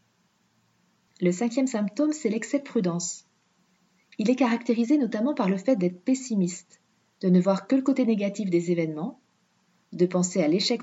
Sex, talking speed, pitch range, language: female, 160 wpm, 180-235 Hz, French